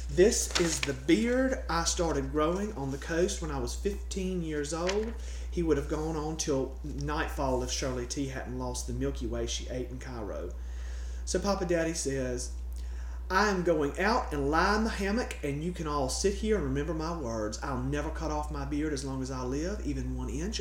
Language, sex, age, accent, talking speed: English, male, 40-59, American, 210 wpm